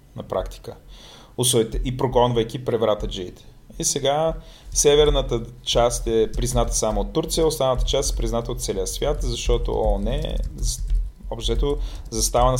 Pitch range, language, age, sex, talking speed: 110-135 Hz, Bulgarian, 30-49, male, 130 wpm